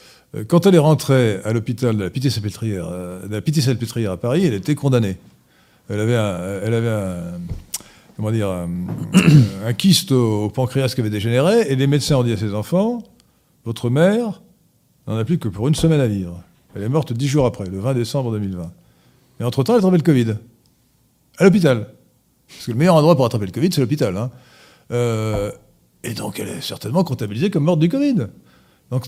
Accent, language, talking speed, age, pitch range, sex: French, French, 190 wpm, 50-69, 110-160 Hz, male